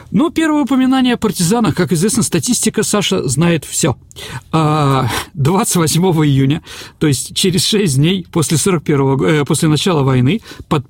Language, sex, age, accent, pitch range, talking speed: Russian, male, 40-59, native, 140-195 Hz, 140 wpm